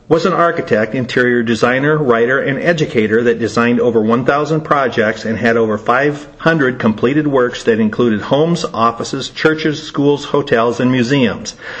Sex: male